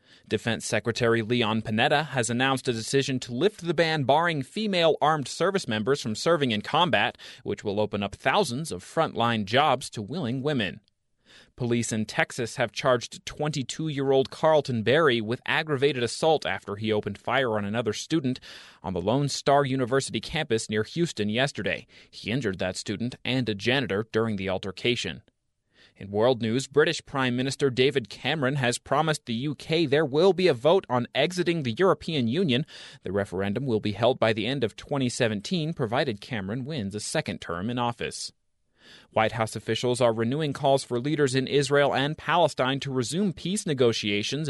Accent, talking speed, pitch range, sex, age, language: American, 170 wpm, 110-140 Hz, male, 30-49, English